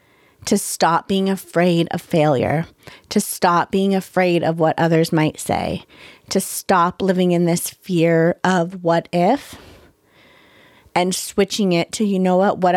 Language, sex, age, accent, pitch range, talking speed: English, female, 30-49, American, 175-200 Hz, 150 wpm